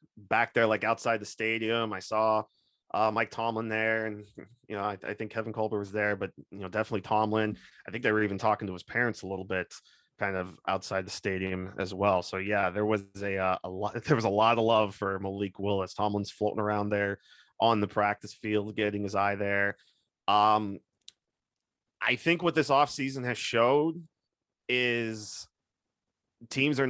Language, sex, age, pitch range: English, male, 20-39, 100-120 Hz